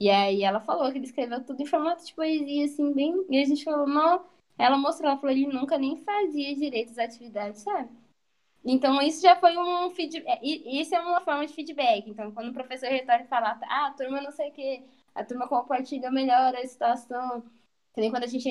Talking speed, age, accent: 220 wpm, 10-29, Brazilian